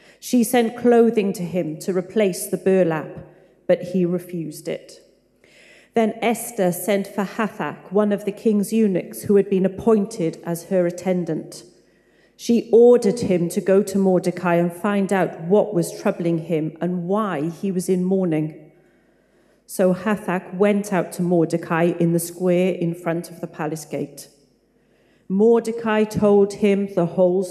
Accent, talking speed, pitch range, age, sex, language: British, 155 wpm, 170-205 Hz, 40-59, female, English